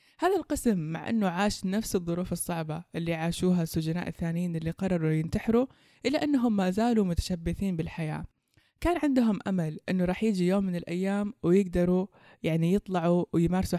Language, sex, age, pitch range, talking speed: Persian, female, 20-39, 170-210 Hz, 150 wpm